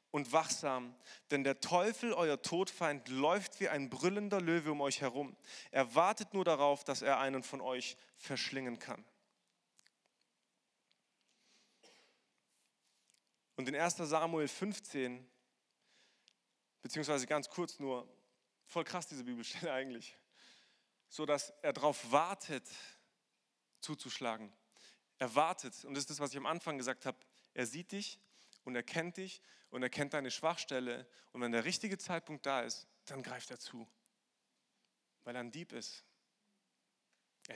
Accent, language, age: German, German, 30-49